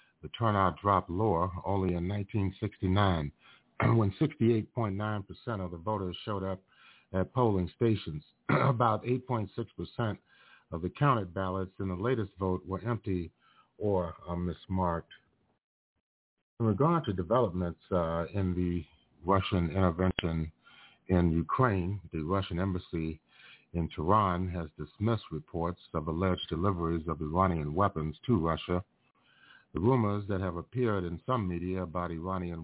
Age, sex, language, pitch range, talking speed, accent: 50-69, male, English, 85-105 Hz, 125 wpm, American